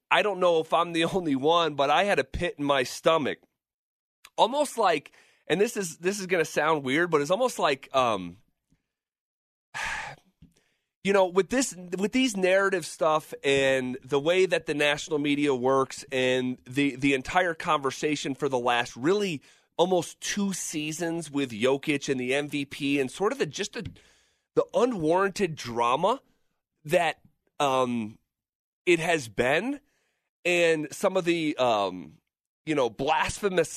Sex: male